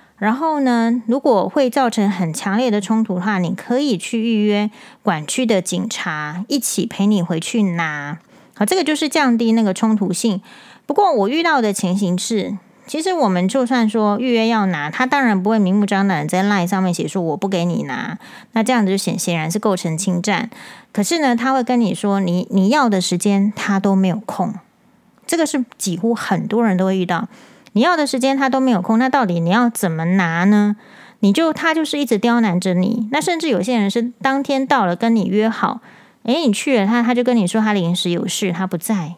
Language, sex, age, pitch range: Chinese, female, 30-49, 195-245 Hz